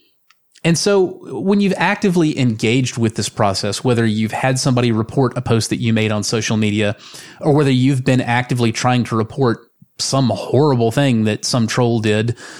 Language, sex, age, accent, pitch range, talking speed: English, male, 30-49, American, 115-140 Hz, 175 wpm